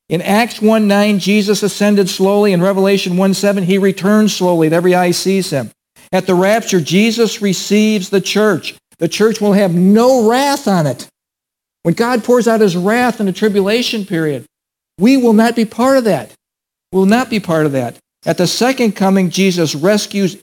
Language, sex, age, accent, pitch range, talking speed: English, male, 60-79, American, 155-205 Hz, 180 wpm